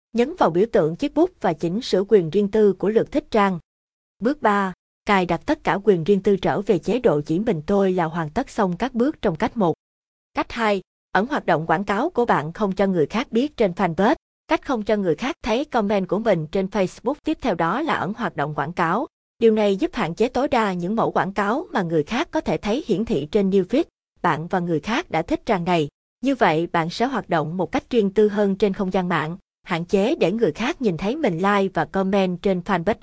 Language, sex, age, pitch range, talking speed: Vietnamese, female, 20-39, 175-225 Hz, 245 wpm